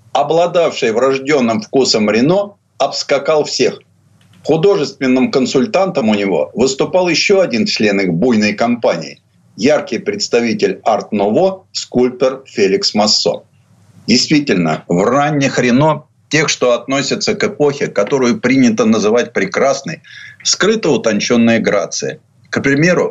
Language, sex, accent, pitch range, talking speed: Russian, male, native, 125-190 Hz, 110 wpm